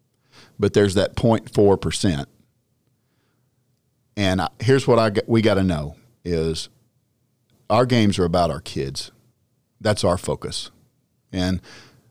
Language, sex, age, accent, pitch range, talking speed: English, male, 50-69, American, 95-130 Hz, 120 wpm